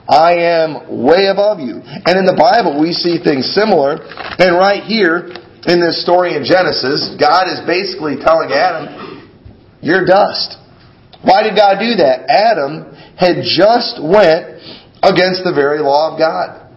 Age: 40-59